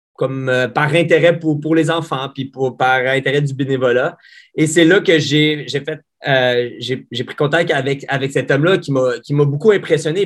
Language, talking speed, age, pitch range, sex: French, 210 wpm, 30-49, 130-160 Hz, male